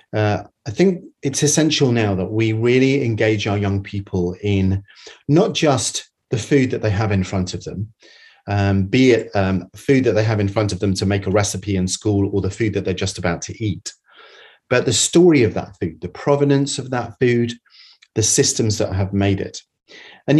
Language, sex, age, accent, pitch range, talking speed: English, male, 30-49, British, 100-130 Hz, 205 wpm